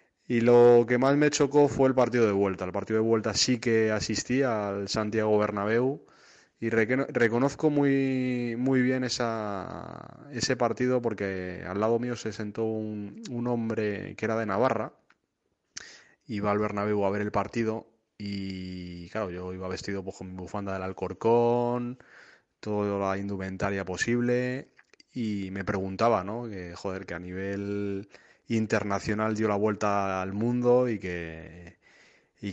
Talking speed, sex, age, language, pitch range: 150 wpm, male, 20-39, Spanish, 95-120 Hz